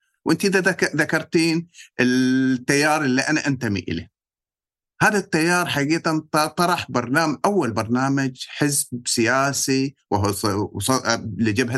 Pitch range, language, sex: 115-160 Hz, Arabic, male